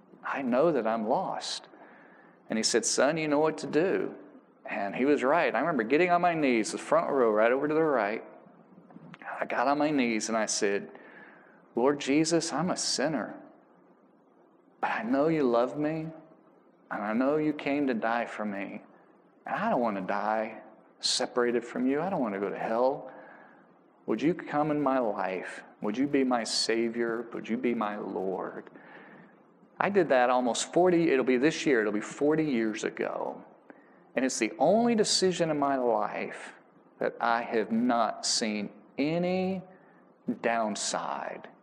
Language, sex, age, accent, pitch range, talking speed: English, male, 40-59, American, 110-150 Hz, 175 wpm